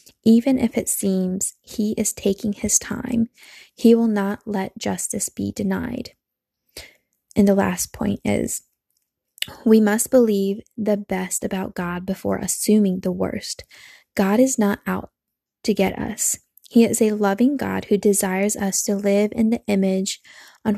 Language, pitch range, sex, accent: English, 195-230 Hz, female, American